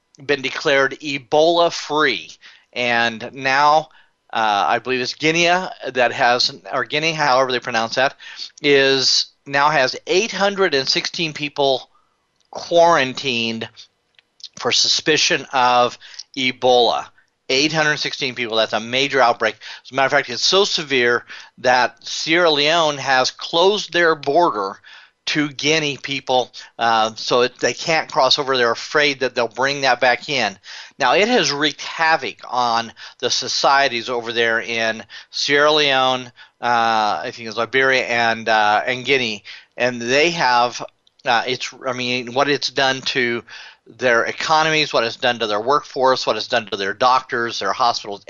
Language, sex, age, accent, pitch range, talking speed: English, male, 40-59, American, 120-145 Hz, 145 wpm